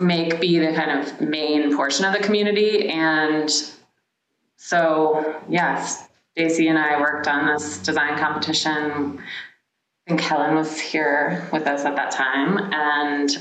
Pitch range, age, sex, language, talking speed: 145-170 Hz, 20-39, female, English, 140 wpm